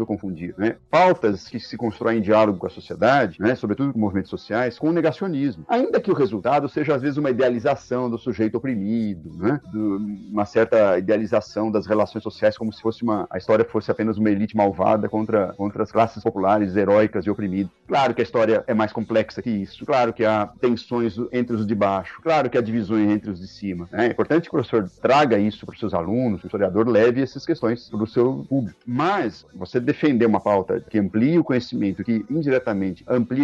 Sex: male